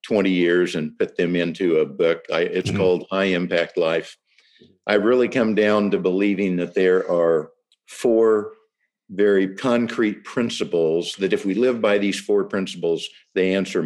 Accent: American